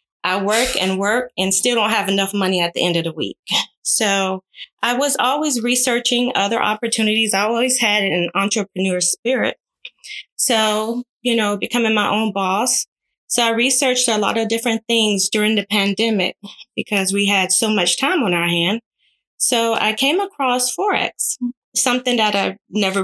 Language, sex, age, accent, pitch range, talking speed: English, female, 20-39, American, 195-240 Hz, 170 wpm